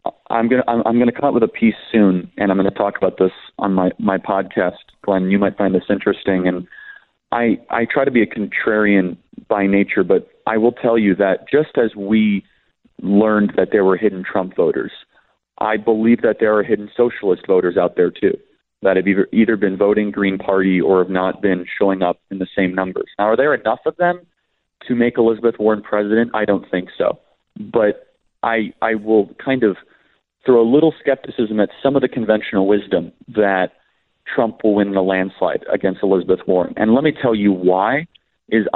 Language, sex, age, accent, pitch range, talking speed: English, male, 30-49, American, 95-115 Hz, 205 wpm